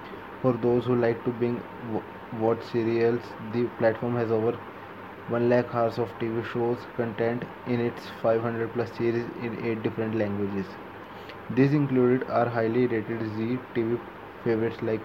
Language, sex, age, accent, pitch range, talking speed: English, male, 20-39, Indian, 110-120 Hz, 150 wpm